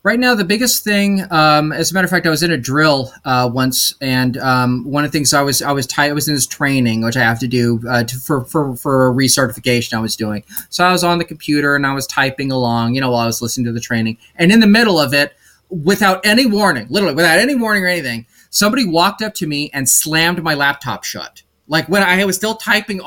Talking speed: 260 wpm